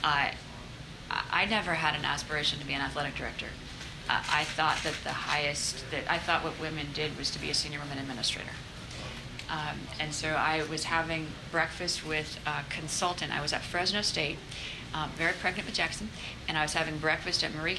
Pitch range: 125-165 Hz